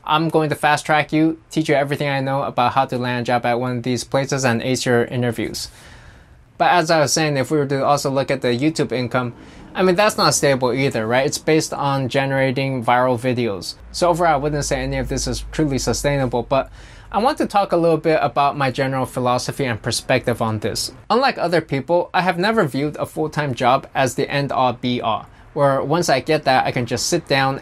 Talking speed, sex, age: 235 wpm, male, 20-39